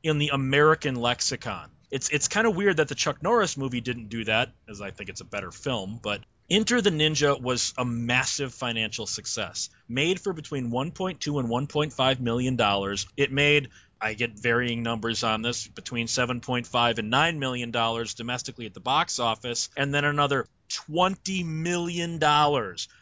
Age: 30-49